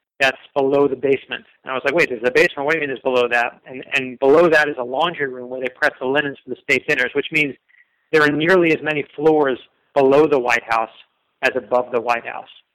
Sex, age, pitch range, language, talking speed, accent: male, 40-59, 135-155 Hz, English, 250 wpm, American